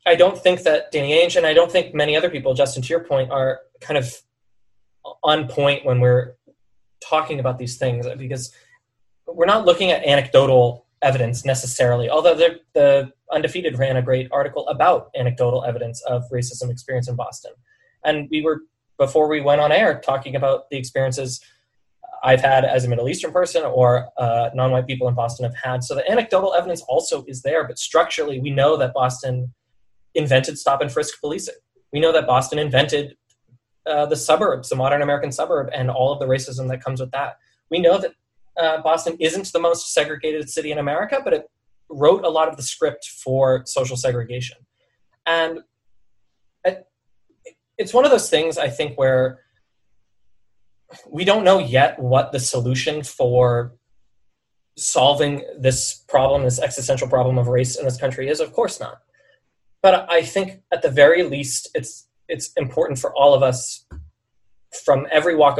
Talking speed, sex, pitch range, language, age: 175 wpm, male, 125-160 Hz, English, 20-39